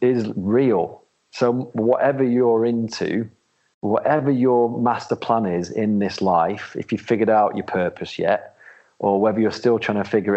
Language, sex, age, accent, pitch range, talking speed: English, male, 40-59, British, 95-115 Hz, 160 wpm